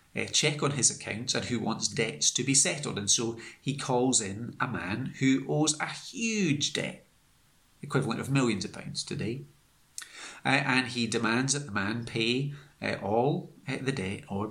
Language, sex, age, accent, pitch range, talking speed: English, male, 30-49, British, 110-145 Hz, 180 wpm